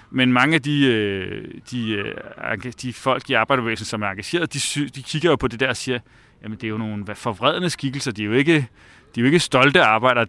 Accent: native